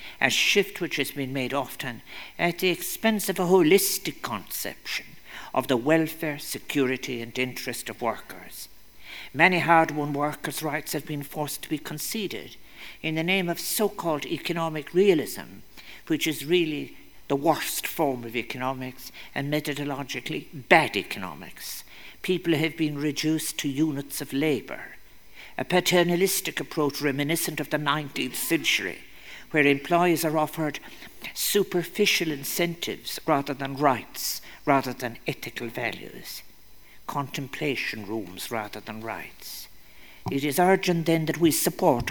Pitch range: 140-170 Hz